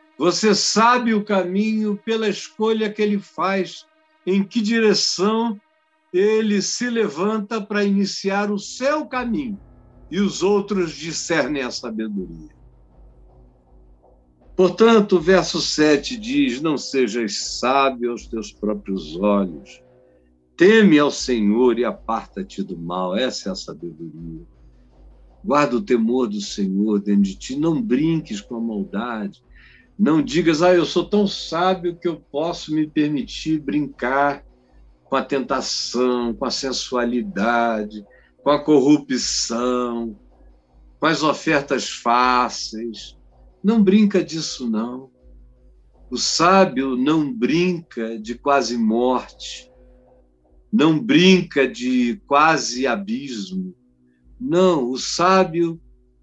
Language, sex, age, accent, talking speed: Portuguese, male, 60-79, Brazilian, 115 wpm